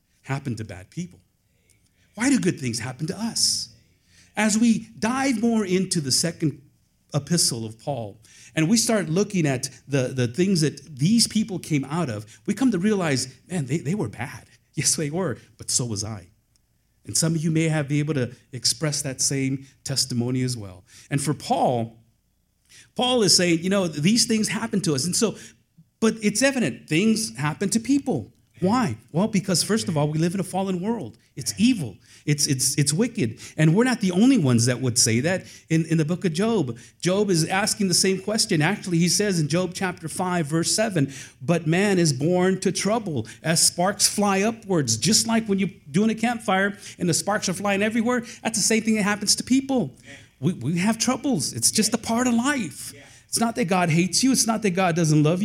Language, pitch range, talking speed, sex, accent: English, 135-210 Hz, 205 wpm, male, American